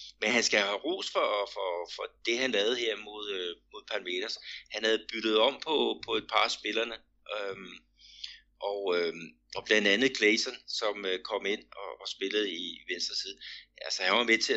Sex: male